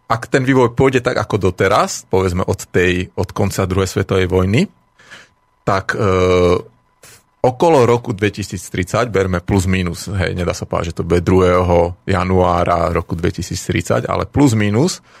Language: Slovak